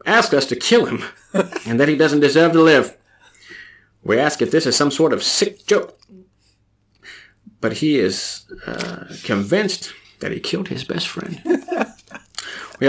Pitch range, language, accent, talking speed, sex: 125-180 Hz, English, American, 160 wpm, male